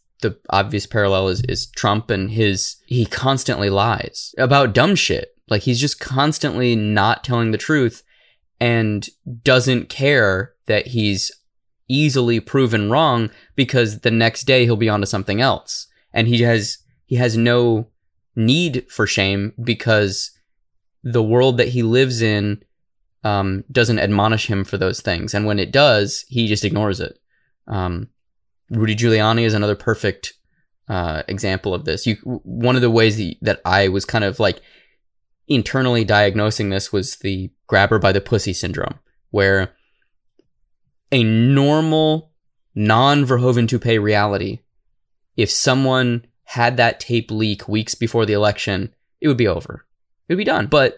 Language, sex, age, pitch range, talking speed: English, male, 20-39, 100-125 Hz, 155 wpm